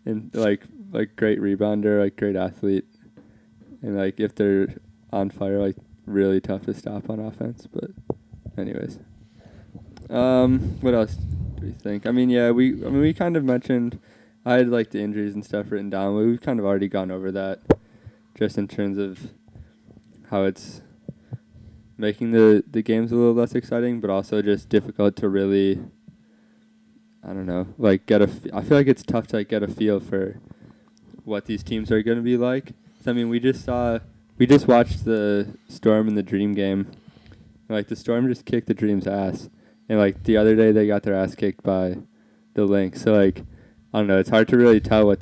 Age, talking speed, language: 20-39, 195 wpm, English